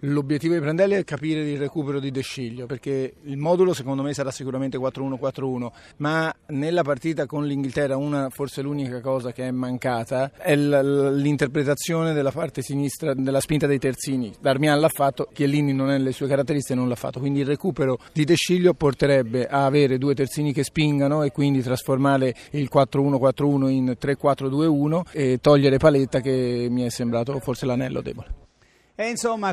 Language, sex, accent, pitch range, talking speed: Italian, male, native, 135-170 Hz, 165 wpm